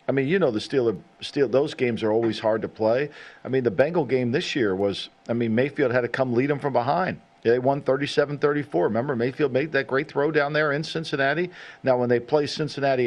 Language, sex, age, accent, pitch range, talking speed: English, male, 50-69, American, 120-150 Hz, 225 wpm